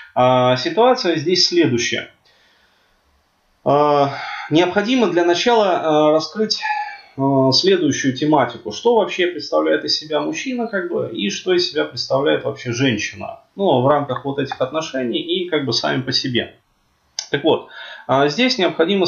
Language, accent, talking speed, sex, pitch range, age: Russian, native, 120 wpm, male, 125-180 Hz, 20-39